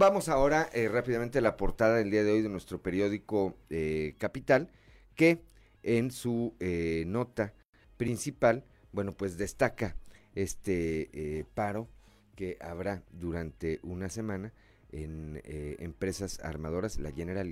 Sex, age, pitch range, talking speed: male, 40-59, 80-105 Hz, 135 wpm